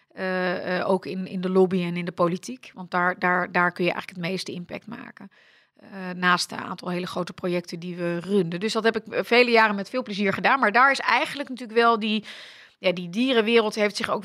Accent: Dutch